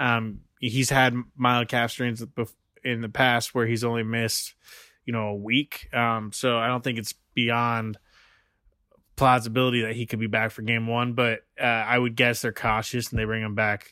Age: 20-39